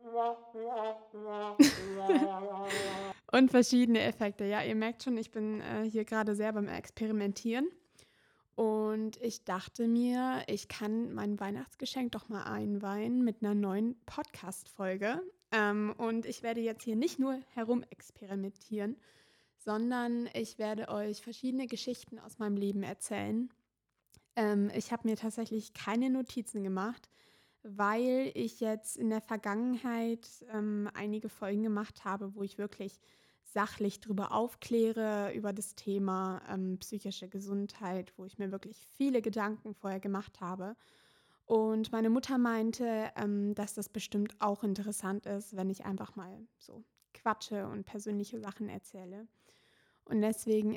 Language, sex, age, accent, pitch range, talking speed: German, female, 20-39, German, 205-230 Hz, 130 wpm